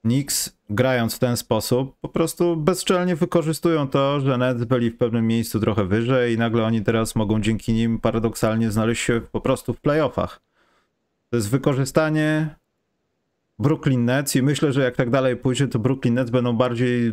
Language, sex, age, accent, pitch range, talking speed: Polish, male, 30-49, native, 110-155 Hz, 170 wpm